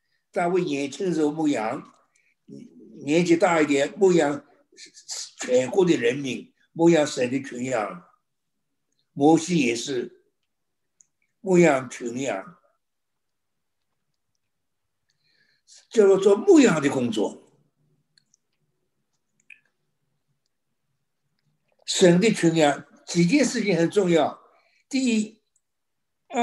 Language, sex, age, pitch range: Chinese, male, 60-79, 150-225 Hz